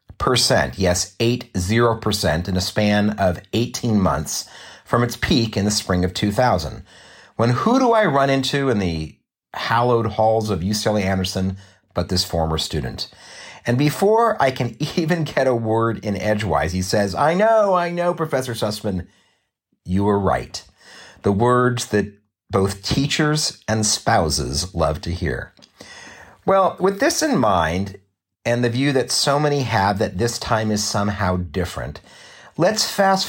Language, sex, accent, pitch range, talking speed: English, male, American, 95-135 Hz, 155 wpm